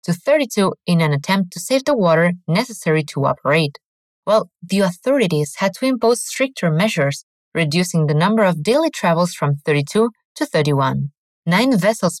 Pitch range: 160-220 Hz